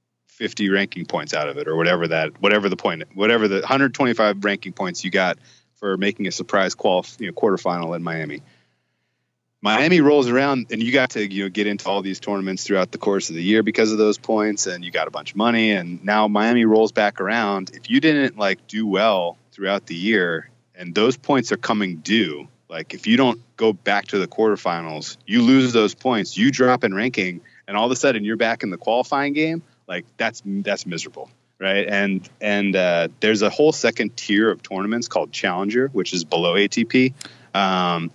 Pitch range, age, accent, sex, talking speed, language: 95-115 Hz, 30-49, American, male, 205 wpm, English